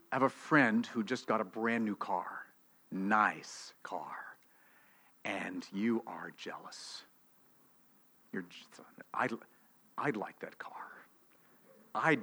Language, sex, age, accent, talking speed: English, male, 50-69, American, 120 wpm